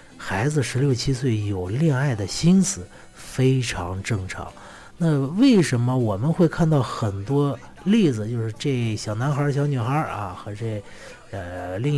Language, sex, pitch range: Chinese, male, 110-155 Hz